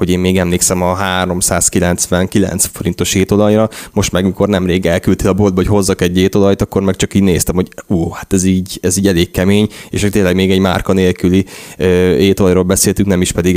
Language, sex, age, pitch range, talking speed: Hungarian, male, 20-39, 90-105 Hz, 200 wpm